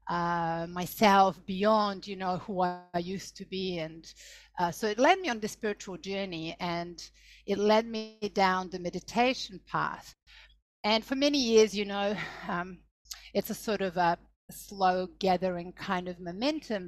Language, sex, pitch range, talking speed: English, female, 180-225 Hz, 160 wpm